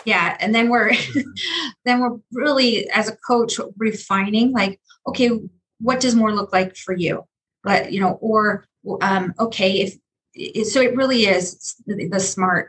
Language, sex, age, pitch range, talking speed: English, female, 30-49, 185-225 Hz, 155 wpm